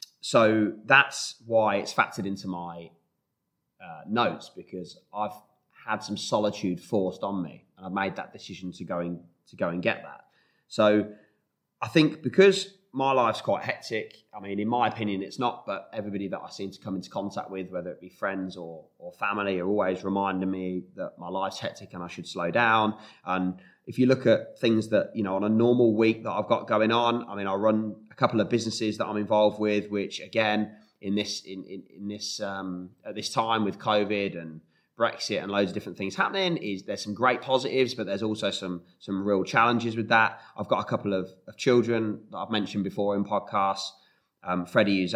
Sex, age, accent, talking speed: male, 20-39, British, 210 wpm